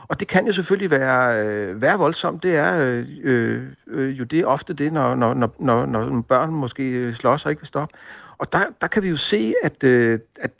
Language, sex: Danish, male